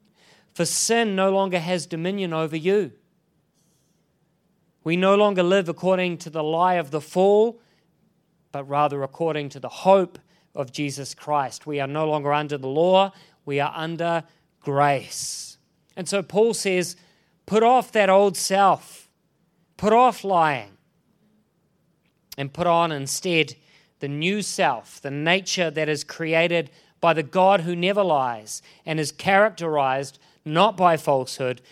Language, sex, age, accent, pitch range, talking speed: English, male, 40-59, Australian, 145-185 Hz, 145 wpm